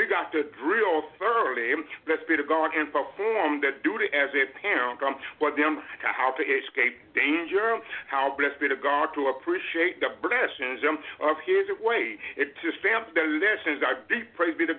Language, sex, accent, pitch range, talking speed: English, male, American, 150-190 Hz, 185 wpm